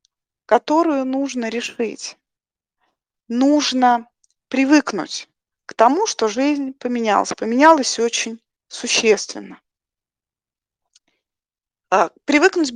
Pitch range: 215-280 Hz